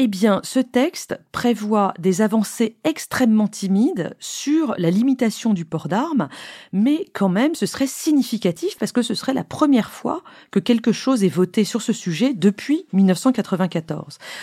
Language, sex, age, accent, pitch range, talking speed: French, female, 40-59, French, 180-245 Hz, 160 wpm